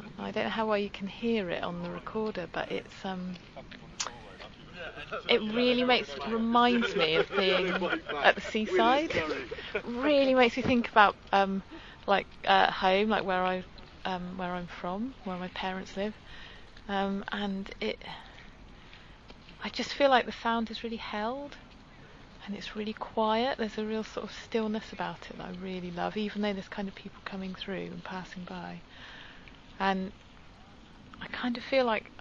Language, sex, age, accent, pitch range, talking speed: English, female, 30-49, British, 190-225 Hz, 170 wpm